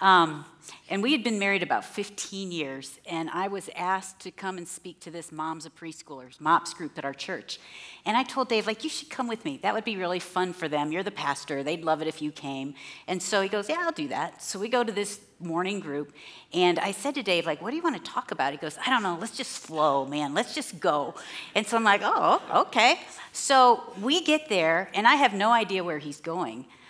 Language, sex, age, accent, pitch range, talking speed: English, female, 40-59, American, 165-265 Hz, 250 wpm